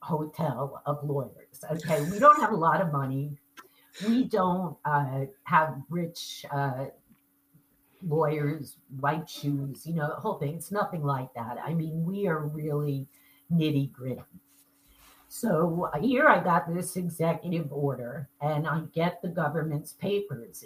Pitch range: 145-195 Hz